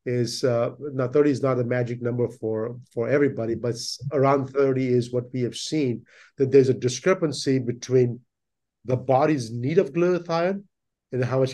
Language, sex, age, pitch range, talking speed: English, male, 50-69, 120-140 Hz, 170 wpm